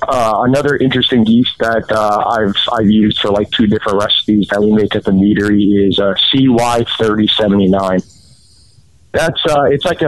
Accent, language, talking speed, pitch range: American, English, 175 wpm, 105-125 Hz